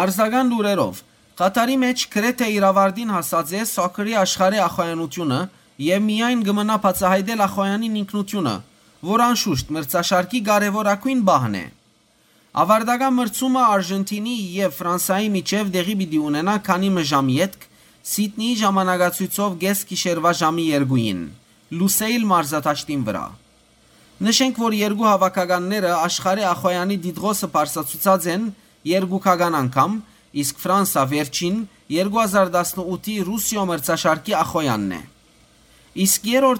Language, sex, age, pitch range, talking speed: English, male, 30-49, 170-210 Hz, 60 wpm